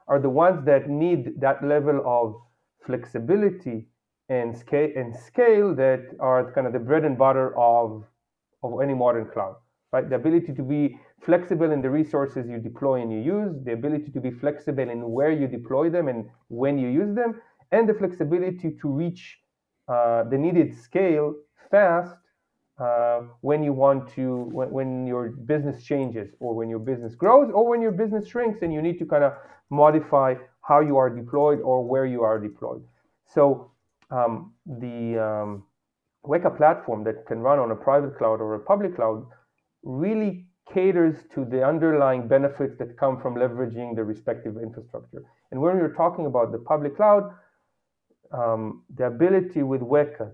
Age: 40-59